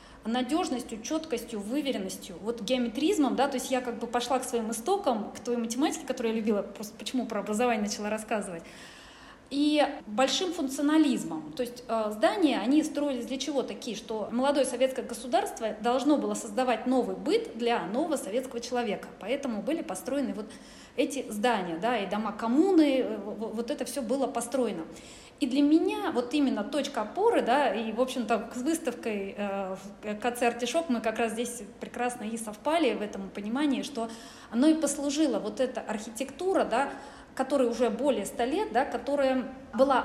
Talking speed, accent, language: 165 wpm, native, Russian